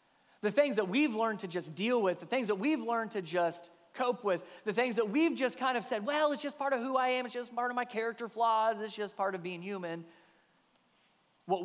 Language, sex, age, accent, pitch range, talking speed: English, male, 20-39, American, 150-200 Hz, 245 wpm